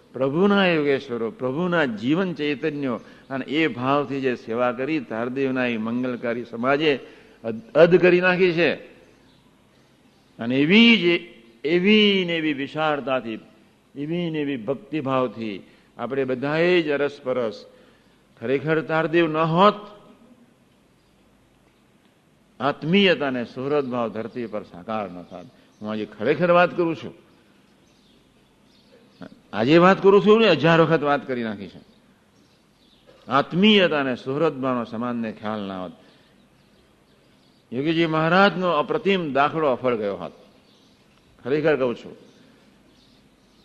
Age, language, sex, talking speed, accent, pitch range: 60-79, Gujarati, male, 85 wpm, native, 120-160 Hz